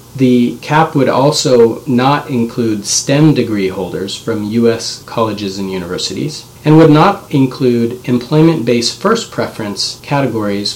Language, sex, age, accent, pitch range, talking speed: English, male, 40-59, American, 110-135 Hz, 125 wpm